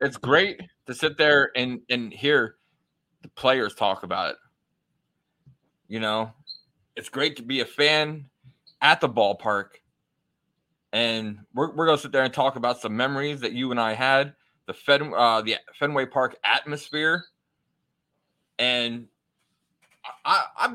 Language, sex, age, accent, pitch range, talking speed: English, male, 20-39, American, 115-140 Hz, 145 wpm